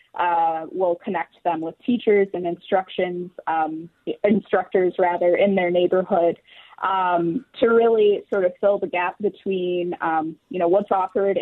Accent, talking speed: American, 145 wpm